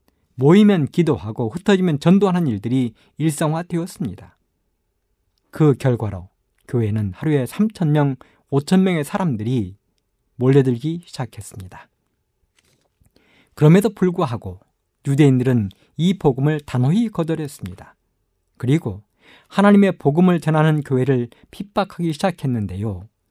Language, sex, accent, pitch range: Korean, male, native, 110-170 Hz